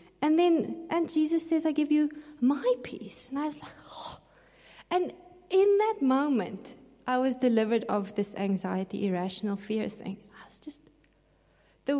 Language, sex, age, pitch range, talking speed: English, female, 30-49, 200-255 Hz, 160 wpm